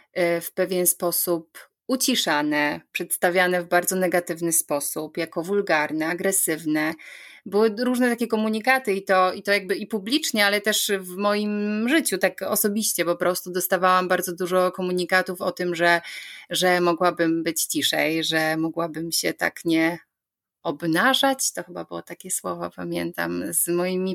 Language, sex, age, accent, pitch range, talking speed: Polish, female, 30-49, native, 165-205 Hz, 140 wpm